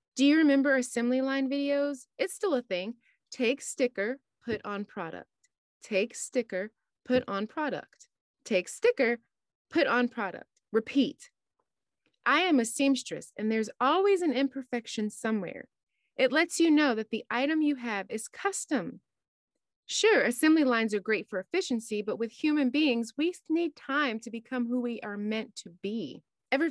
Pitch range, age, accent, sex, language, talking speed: 220-285 Hz, 20-39, American, female, English, 155 wpm